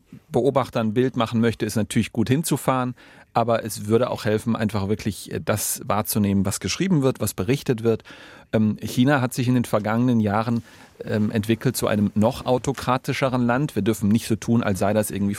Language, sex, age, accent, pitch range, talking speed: German, male, 40-59, German, 105-120 Hz, 180 wpm